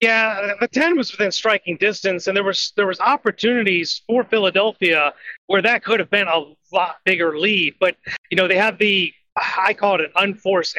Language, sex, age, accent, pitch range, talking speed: English, male, 30-49, American, 180-215 Hz, 195 wpm